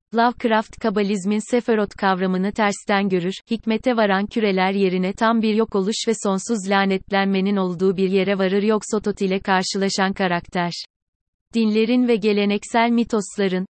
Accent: native